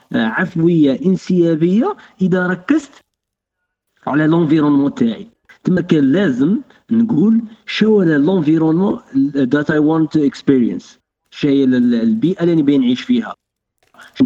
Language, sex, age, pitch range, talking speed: Arabic, male, 50-69, 140-225 Hz, 110 wpm